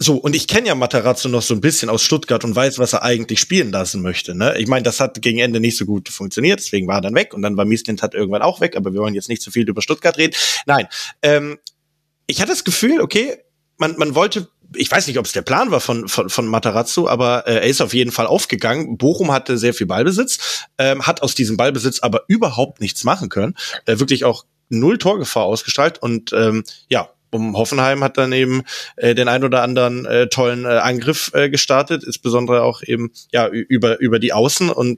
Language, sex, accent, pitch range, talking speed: German, male, German, 115-135 Hz, 230 wpm